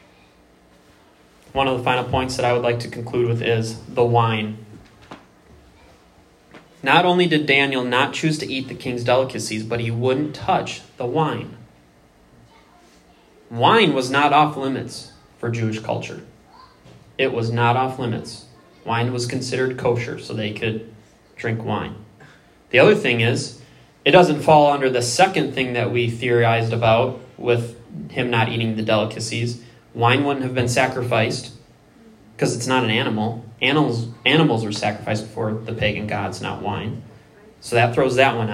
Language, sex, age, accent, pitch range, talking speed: English, male, 20-39, American, 115-130 Hz, 155 wpm